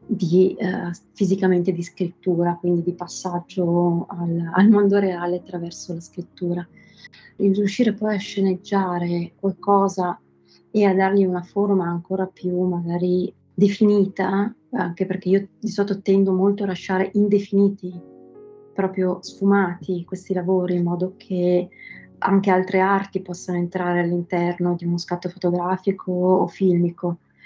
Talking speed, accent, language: 125 wpm, native, Italian